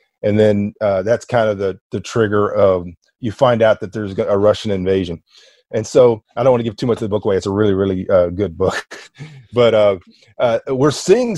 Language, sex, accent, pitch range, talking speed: English, male, American, 100-120 Hz, 225 wpm